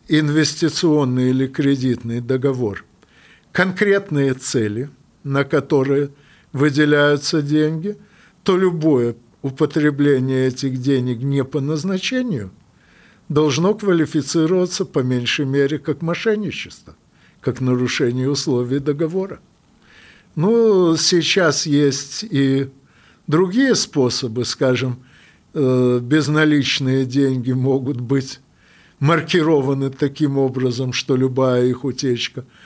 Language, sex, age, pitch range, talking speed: Russian, male, 60-79, 130-165 Hz, 85 wpm